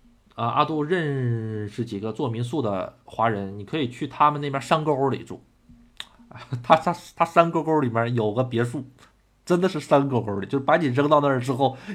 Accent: native